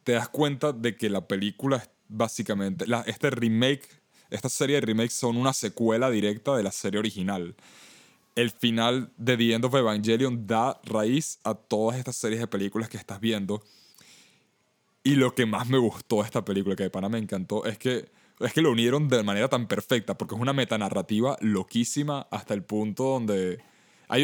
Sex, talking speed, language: male, 185 wpm, English